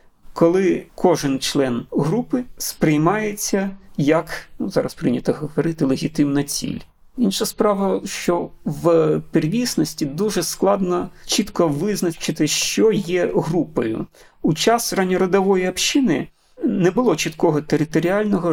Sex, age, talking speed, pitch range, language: male, 40-59, 100 wpm, 155-200 Hz, Ukrainian